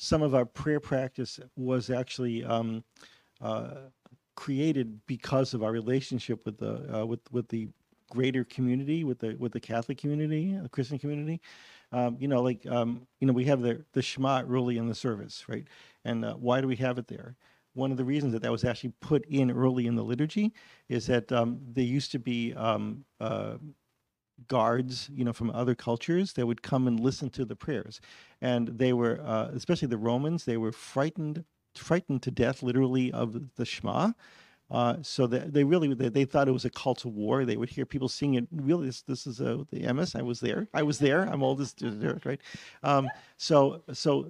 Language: English